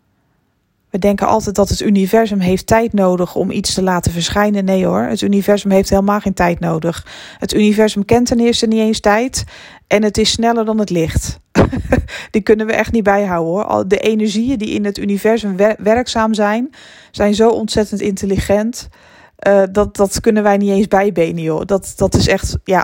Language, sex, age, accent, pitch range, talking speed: Dutch, female, 20-39, Dutch, 190-225 Hz, 190 wpm